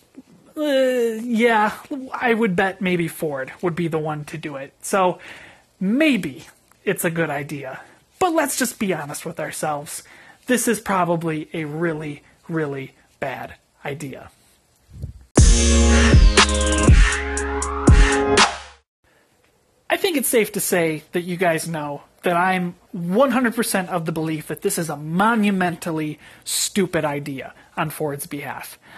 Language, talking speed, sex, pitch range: English, 125 wpm, male, 160-215 Hz